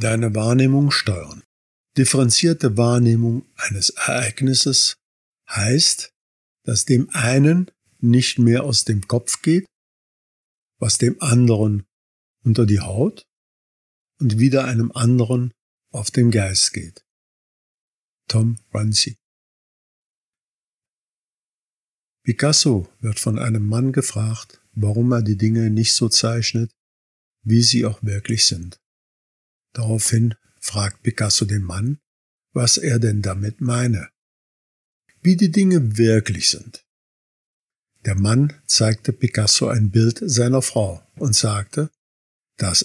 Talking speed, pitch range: 110 wpm, 105-130 Hz